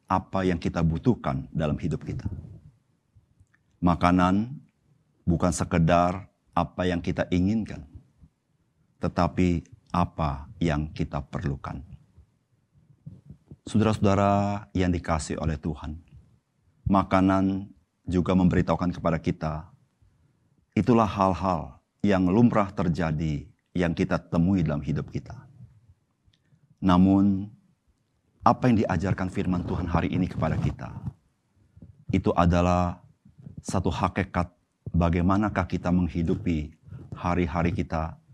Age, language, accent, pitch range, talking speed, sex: 50-69, Indonesian, native, 85-110 Hz, 90 wpm, male